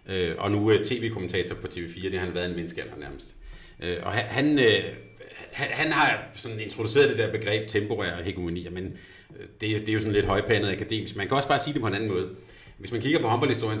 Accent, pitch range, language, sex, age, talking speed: native, 100-120 Hz, Danish, male, 30-49, 210 wpm